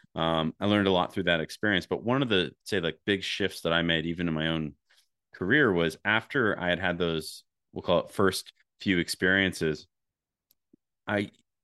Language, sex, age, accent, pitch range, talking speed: English, male, 30-49, American, 80-90 Hz, 190 wpm